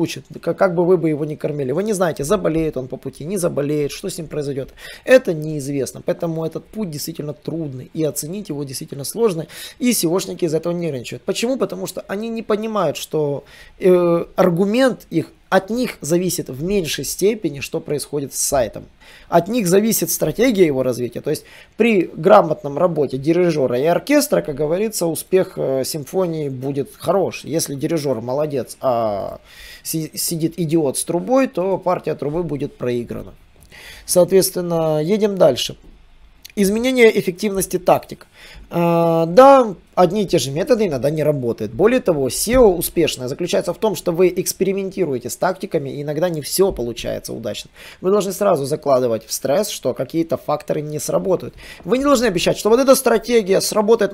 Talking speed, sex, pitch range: 160 wpm, male, 150-195 Hz